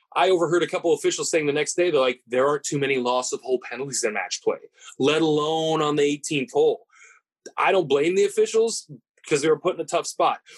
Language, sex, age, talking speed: English, male, 20-39, 240 wpm